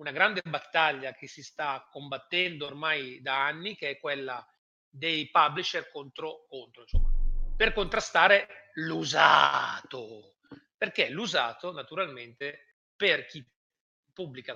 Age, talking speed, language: 40-59, 110 wpm, Italian